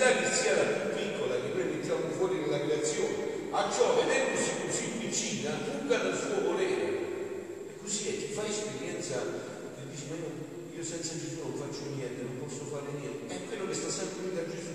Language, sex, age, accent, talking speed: Italian, male, 40-59, native, 185 wpm